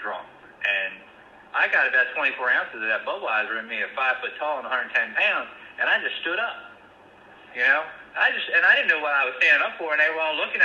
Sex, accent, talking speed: male, American, 240 wpm